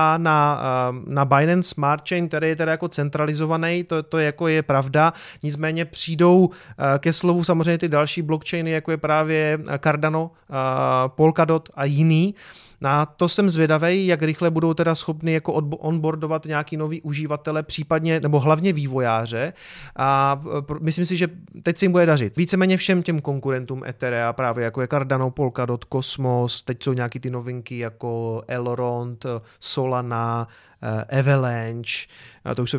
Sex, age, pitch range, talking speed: male, 30-49, 130-160 Hz, 150 wpm